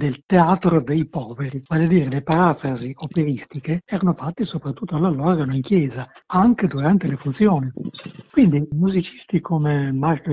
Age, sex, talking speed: 60-79, male, 140 wpm